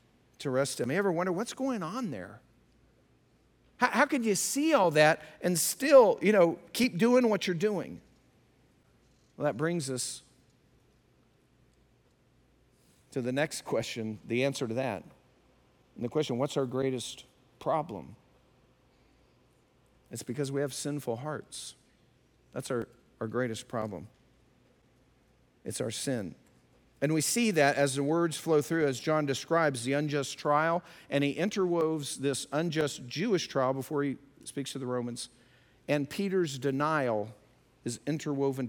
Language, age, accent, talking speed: English, 50-69, American, 145 wpm